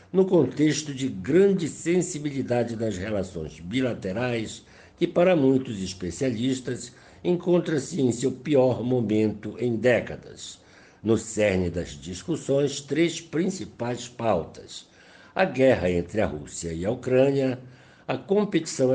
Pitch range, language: 95-140 Hz, Portuguese